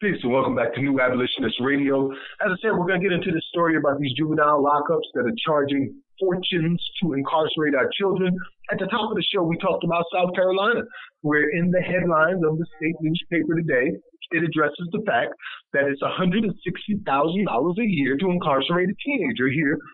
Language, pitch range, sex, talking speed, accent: English, 150-190 Hz, male, 185 wpm, American